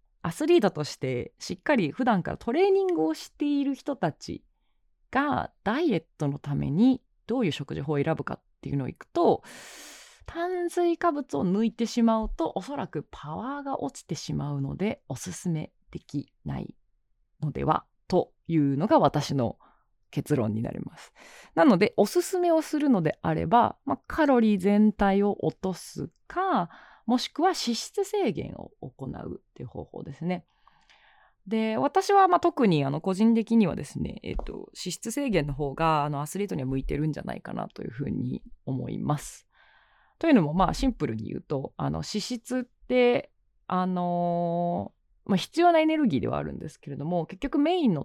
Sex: female